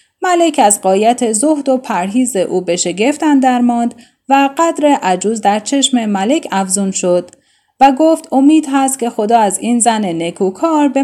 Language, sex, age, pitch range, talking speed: Persian, female, 10-29, 200-285 Hz, 160 wpm